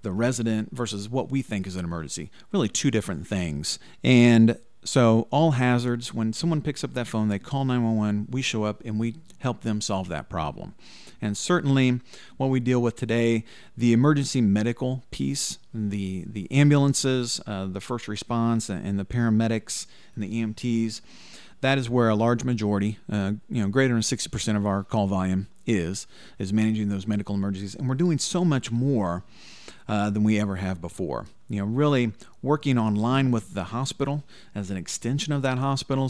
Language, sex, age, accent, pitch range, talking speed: English, male, 40-59, American, 105-130 Hz, 180 wpm